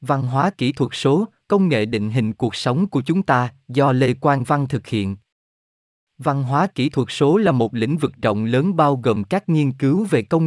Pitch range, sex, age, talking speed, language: 115-165 Hz, male, 20-39, 220 wpm, Vietnamese